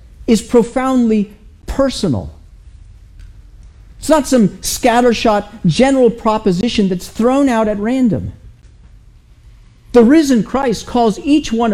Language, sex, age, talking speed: English, male, 50-69, 100 wpm